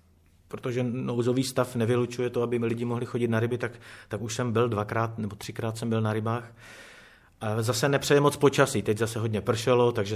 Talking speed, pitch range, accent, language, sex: 200 wpm, 100-120 Hz, native, Czech, male